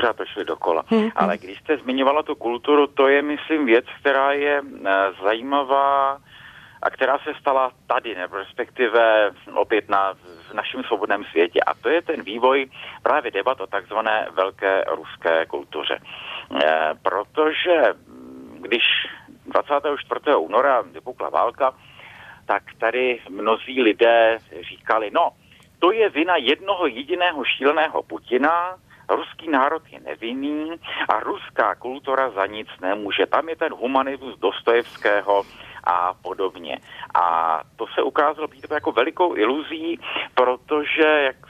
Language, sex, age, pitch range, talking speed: Czech, male, 40-59, 115-160 Hz, 125 wpm